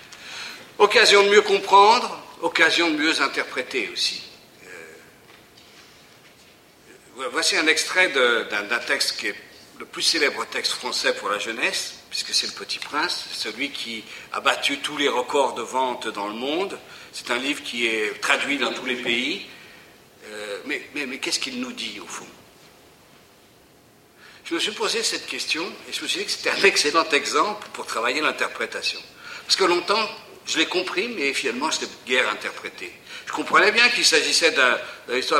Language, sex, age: French, male, 60-79